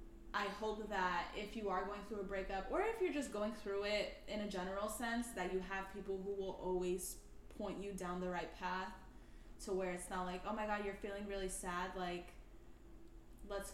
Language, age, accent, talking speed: English, 10-29, American, 210 wpm